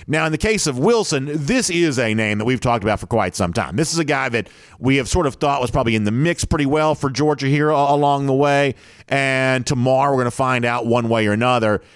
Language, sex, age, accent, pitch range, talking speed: English, male, 40-59, American, 105-145 Hz, 260 wpm